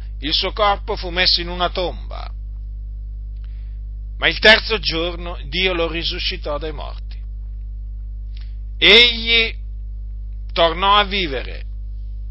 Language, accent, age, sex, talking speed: Italian, native, 50-69, male, 100 wpm